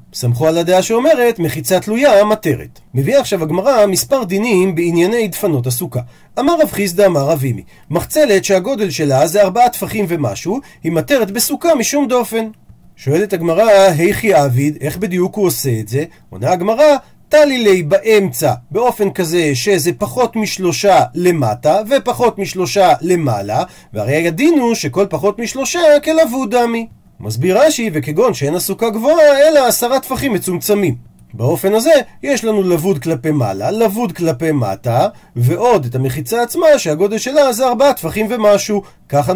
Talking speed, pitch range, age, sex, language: 140 wpm, 160-230 Hz, 40-59, male, Hebrew